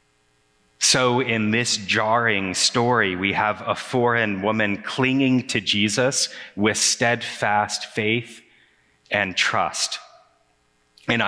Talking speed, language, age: 100 wpm, English, 30-49